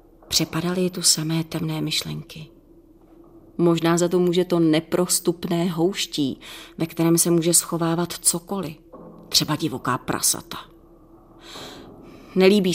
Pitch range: 160-200 Hz